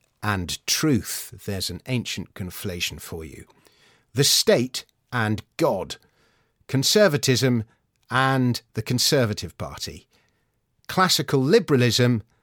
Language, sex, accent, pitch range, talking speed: English, male, British, 105-140 Hz, 90 wpm